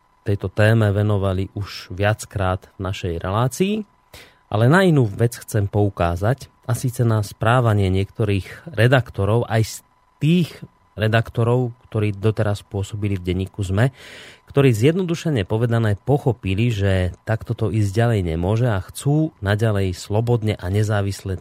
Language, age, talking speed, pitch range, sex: Slovak, 30-49, 130 wpm, 100-130 Hz, male